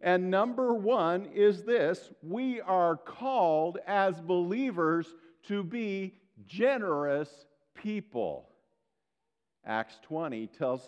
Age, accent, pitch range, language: 50-69, American, 150-200 Hz, English